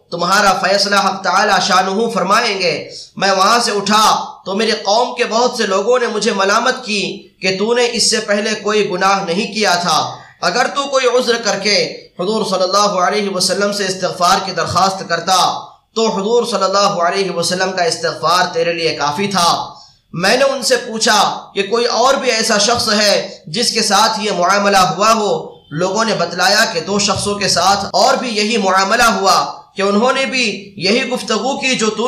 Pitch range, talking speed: 190-230 Hz, 170 wpm